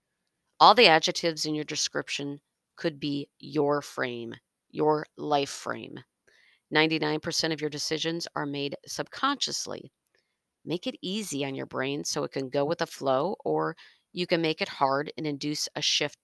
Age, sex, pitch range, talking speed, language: 40-59, female, 145-180 Hz, 160 wpm, English